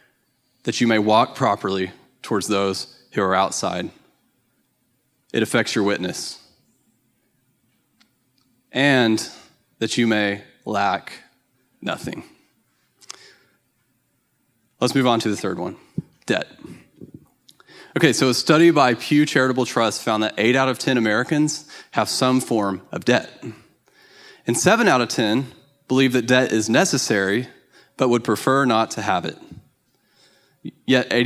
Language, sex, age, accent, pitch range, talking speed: English, male, 30-49, American, 110-135 Hz, 125 wpm